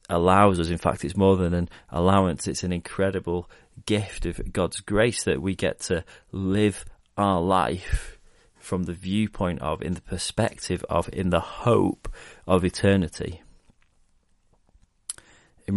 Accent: British